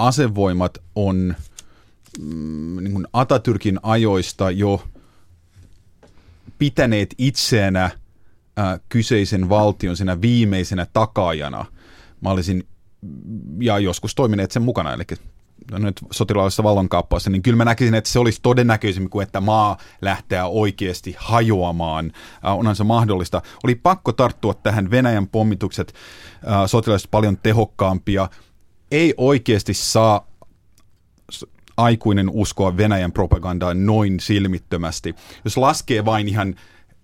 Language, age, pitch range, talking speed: Finnish, 30-49, 95-110 Hz, 105 wpm